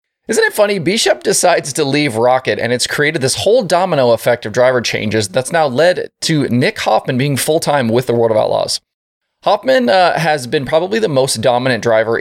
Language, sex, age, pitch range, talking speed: English, male, 20-39, 120-165 Hz, 195 wpm